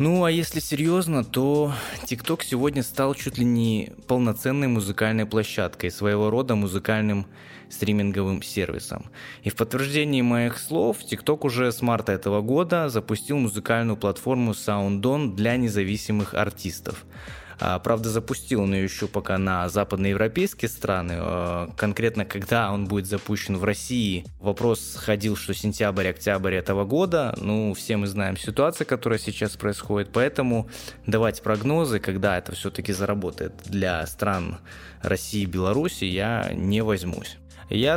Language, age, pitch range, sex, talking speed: Russian, 20-39, 100-125 Hz, male, 130 wpm